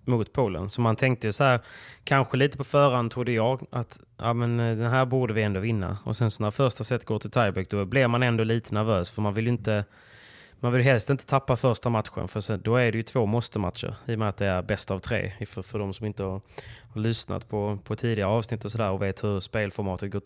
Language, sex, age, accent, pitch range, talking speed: Swedish, male, 20-39, native, 105-120 Hz, 260 wpm